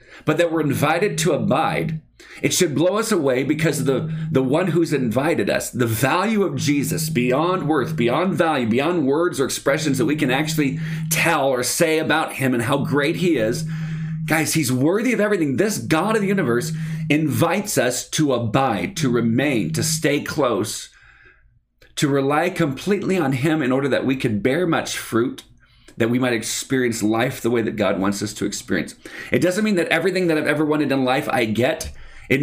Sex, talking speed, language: male, 190 wpm, English